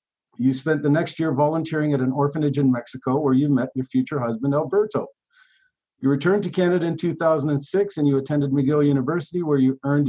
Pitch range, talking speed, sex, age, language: 135-155 Hz, 190 wpm, male, 50-69, English